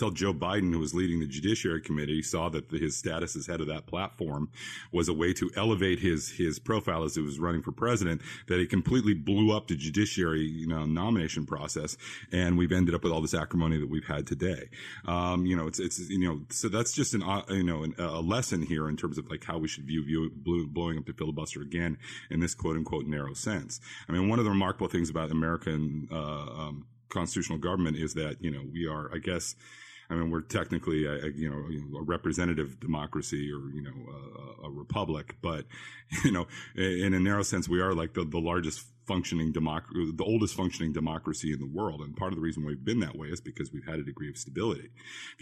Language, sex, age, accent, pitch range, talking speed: English, male, 40-59, American, 75-95 Hz, 220 wpm